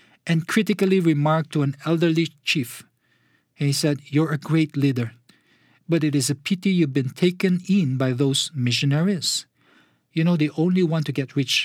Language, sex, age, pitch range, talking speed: English, male, 50-69, 125-160 Hz, 170 wpm